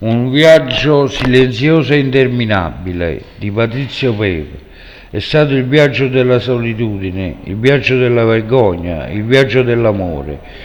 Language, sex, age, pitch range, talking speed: Italian, male, 60-79, 105-135 Hz, 120 wpm